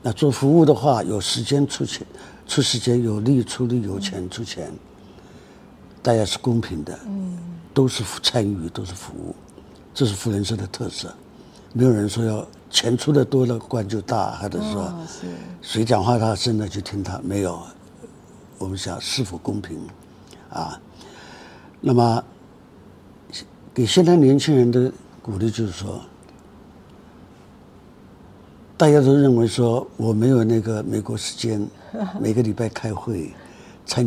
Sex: male